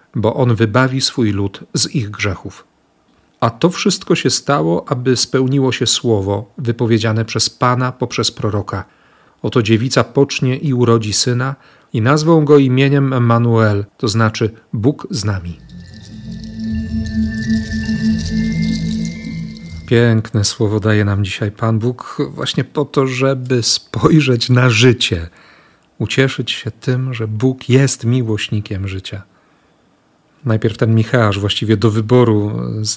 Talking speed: 120 wpm